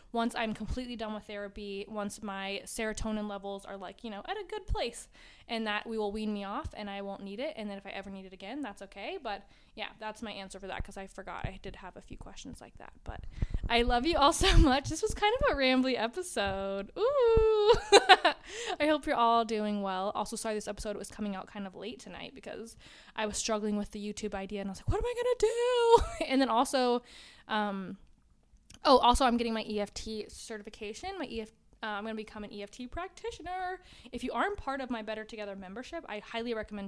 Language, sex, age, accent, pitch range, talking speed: English, female, 20-39, American, 210-265 Hz, 230 wpm